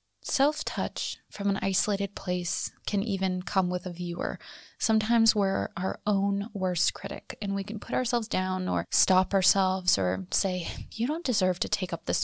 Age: 20-39